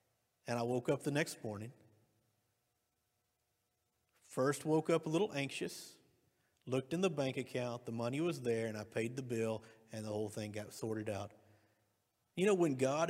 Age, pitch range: 50-69, 110-135 Hz